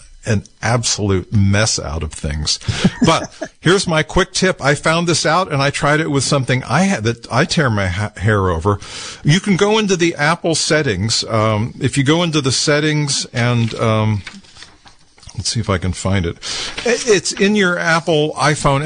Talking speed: 180 wpm